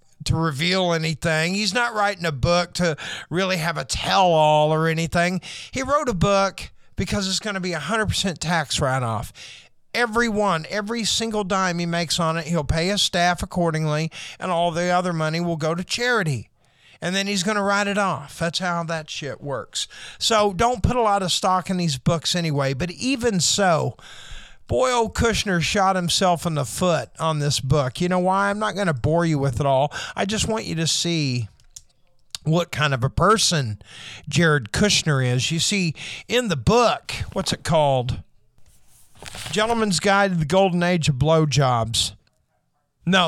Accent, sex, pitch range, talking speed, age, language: American, male, 145-195 Hz, 185 wpm, 50-69, English